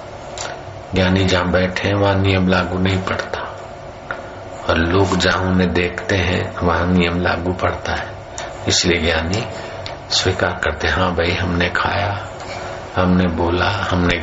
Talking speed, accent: 130 wpm, native